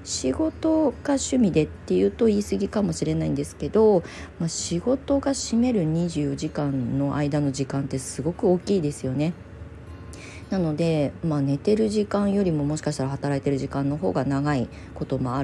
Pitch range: 140-205 Hz